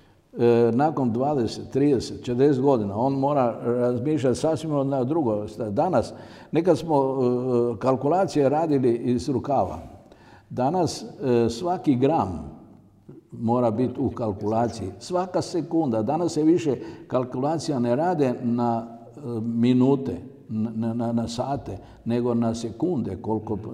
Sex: male